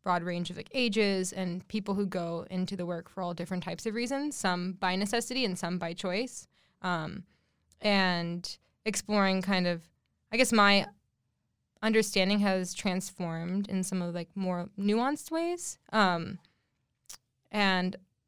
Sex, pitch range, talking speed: female, 180-210 Hz, 150 wpm